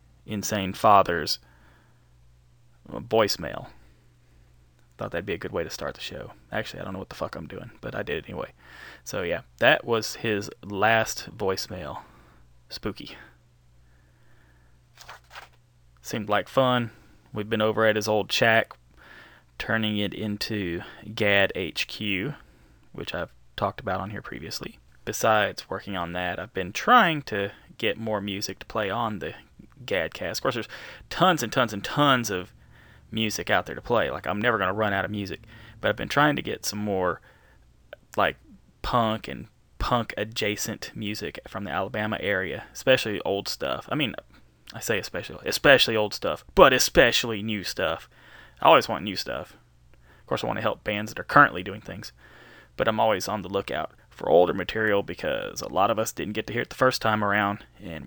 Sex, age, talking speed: male, 10-29, 175 wpm